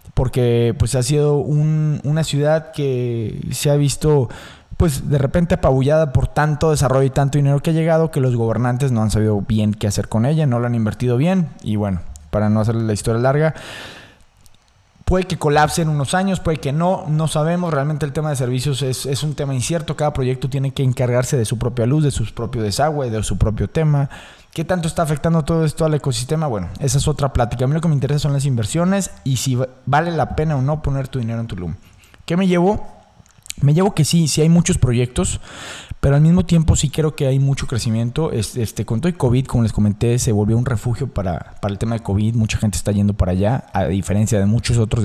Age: 20-39